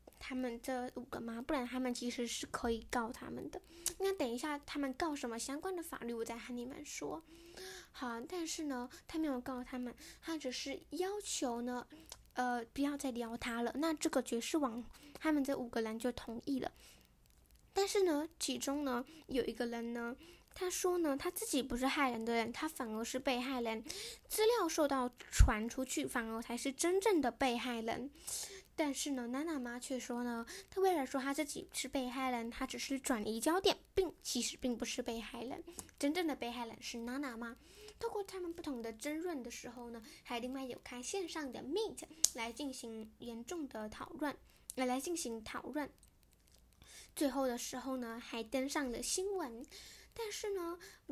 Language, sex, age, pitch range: Chinese, female, 10-29, 245-325 Hz